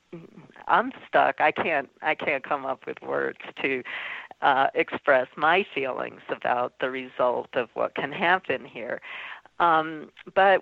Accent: American